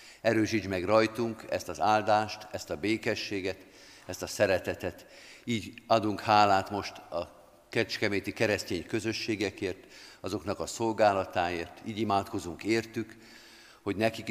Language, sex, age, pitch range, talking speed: Hungarian, male, 50-69, 95-110 Hz, 115 wpm